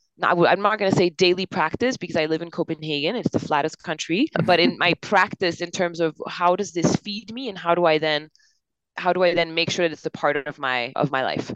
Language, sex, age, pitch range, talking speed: English, female, 20-39, 150-180 Hz, 255 wpm